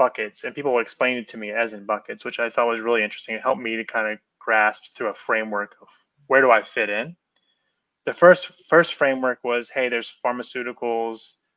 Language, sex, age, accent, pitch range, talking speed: English, male, 20-39, American, 110-125 Hz, 205 wpm